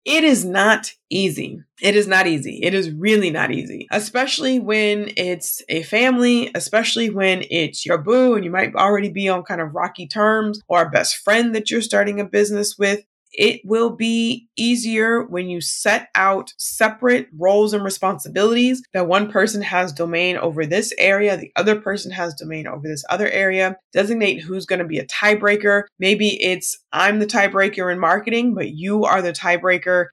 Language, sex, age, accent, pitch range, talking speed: English, female, 20-39, American, 180-225 Hz, 180 wpm